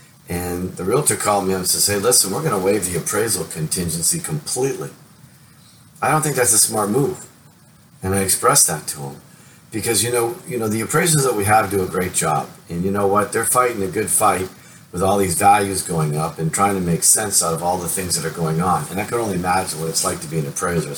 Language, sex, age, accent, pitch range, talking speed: English, male, 40-59, American, 90-125 Hz, 245 wpm